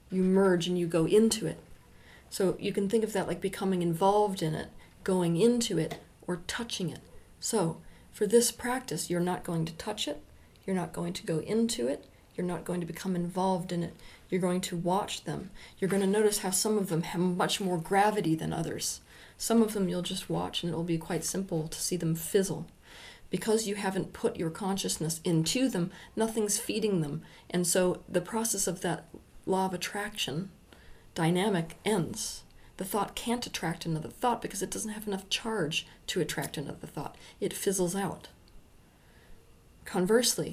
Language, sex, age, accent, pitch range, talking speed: English, female, 40-59, American, 175-205 Hz, 185 wpm